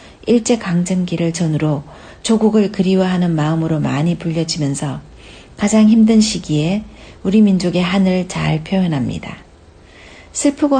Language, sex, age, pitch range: Korean, female, 60-79, 145-205 Hz